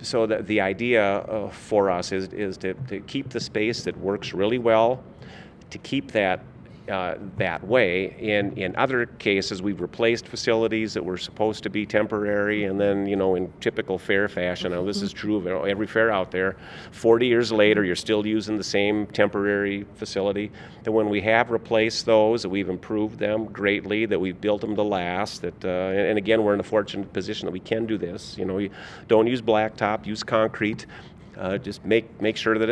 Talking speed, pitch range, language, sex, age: 200 wpm, 95-110 Hz, English, male, 40-59